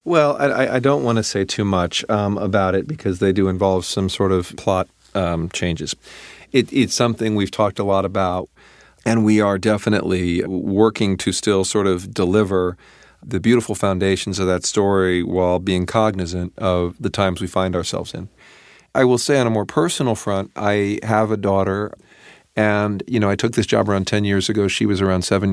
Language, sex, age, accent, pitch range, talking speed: English, male, 40-59, American, 95-115 Hz, 195 wpm